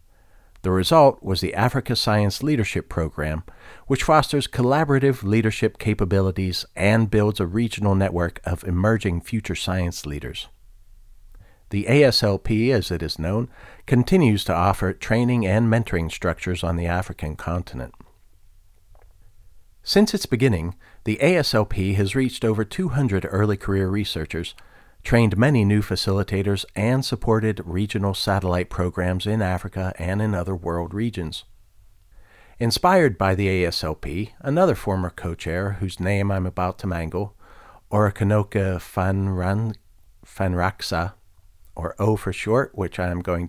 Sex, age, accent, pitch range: male, 50-69, American, 90-110 Hz